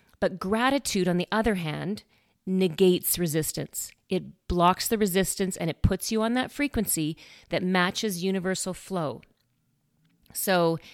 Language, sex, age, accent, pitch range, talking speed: English, female, 40-59, American, 175-220 Hz, 130 wpm